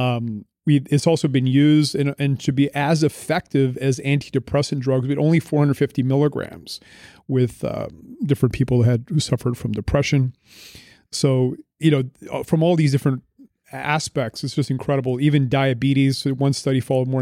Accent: American